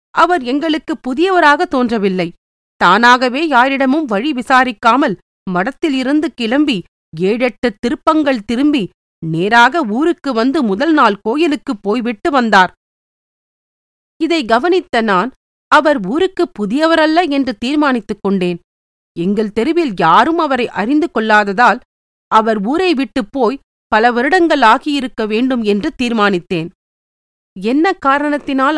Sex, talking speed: female, 100 wpm